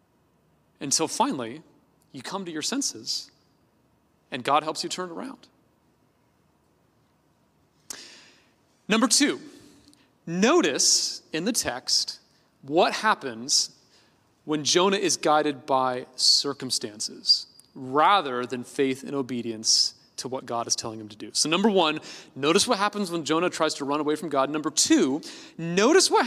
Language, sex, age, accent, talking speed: English, male, 30-49, American, 135 wpm